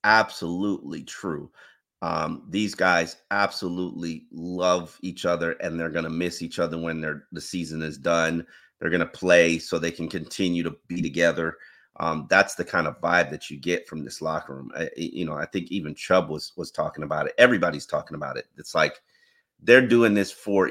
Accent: American